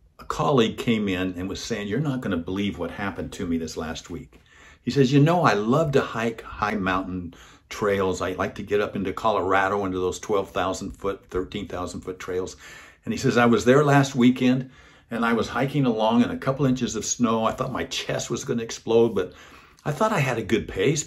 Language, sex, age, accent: English, male, 60-79, American